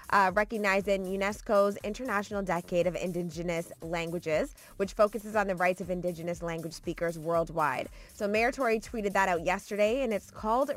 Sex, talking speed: female, 155 wpm